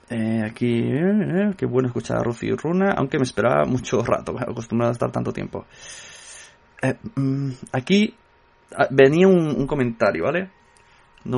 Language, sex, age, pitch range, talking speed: Spanish, male, 20-39, 120-140 Hz, 140 wpm